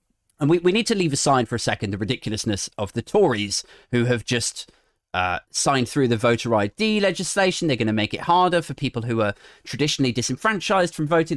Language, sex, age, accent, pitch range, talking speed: English, male, 30-49, British, 125-195 Hz, 205 wpm